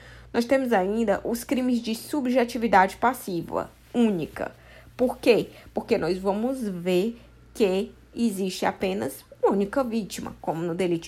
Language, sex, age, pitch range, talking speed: Portuguese, female, 20-39, 185-235 Hz, 130 wpm